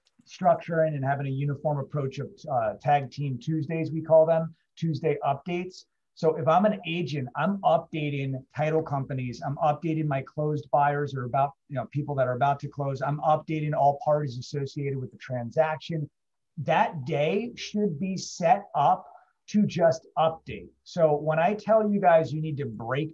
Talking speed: 175 wpm